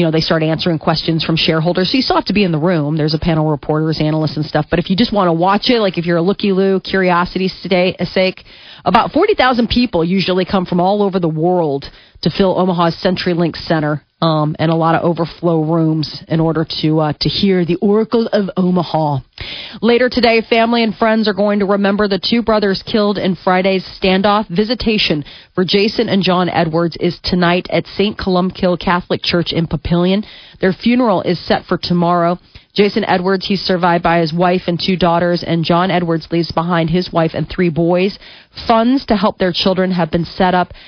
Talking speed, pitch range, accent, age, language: 205 wpm, 165-205 Hz, American, 30-49, English